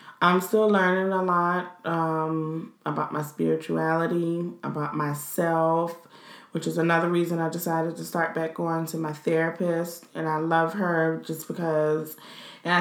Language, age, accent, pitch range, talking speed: English, 20-39, American, 150-175 Hz, 145 wpm